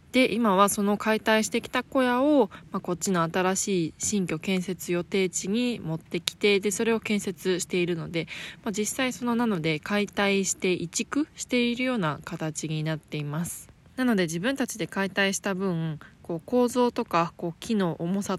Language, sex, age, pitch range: Japanese, female, 20-39, 165-215 Hz